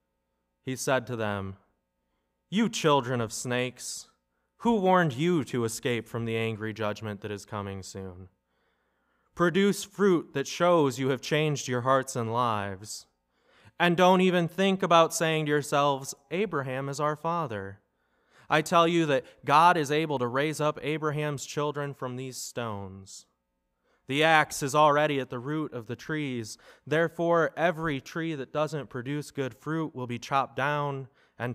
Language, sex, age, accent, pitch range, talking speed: English, male, 20-39, American, 105-150 Hz, 155 wpm